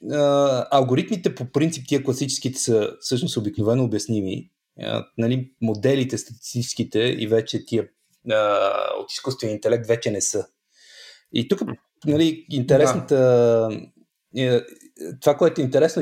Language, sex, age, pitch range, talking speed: Bulgarian, male, 30-49, 115-145 Hz, 120 wpm